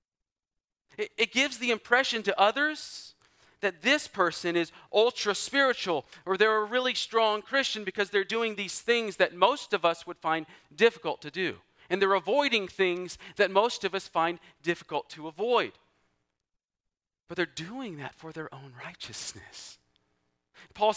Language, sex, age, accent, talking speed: English, male, 40-59, American, 150 wpm